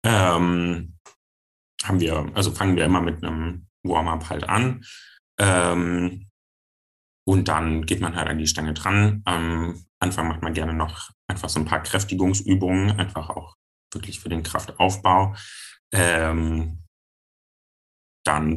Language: German